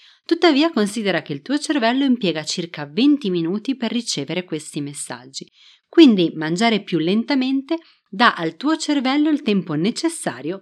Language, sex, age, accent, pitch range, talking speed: Italian, female, 30-49, native, 165-270 Hz, 140 wpm